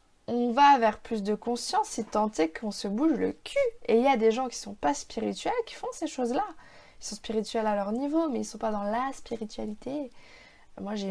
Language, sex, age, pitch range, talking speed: French, female, 20-39, 195-235 Hz, 250 wpm